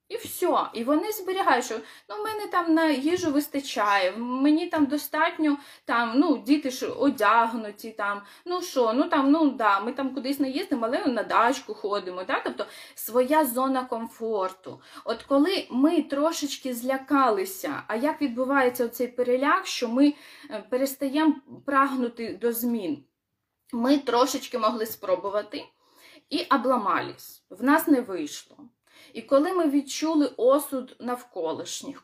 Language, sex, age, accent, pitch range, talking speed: Ukrainian, female, 20-39, native, 235-300 Hz, 140 wpm